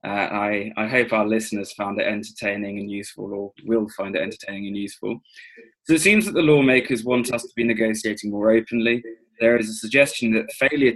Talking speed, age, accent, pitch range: 205 wpm, 20-39, British, 105-125 Hz